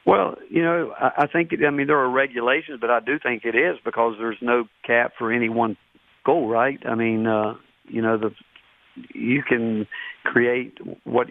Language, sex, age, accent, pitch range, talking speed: English, male, 50-69, American, 115-125 Hz, 190 wpm